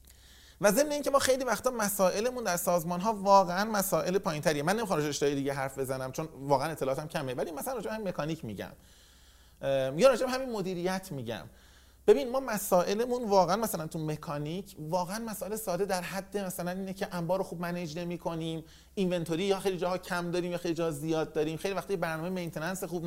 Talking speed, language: 175 wpm, Persian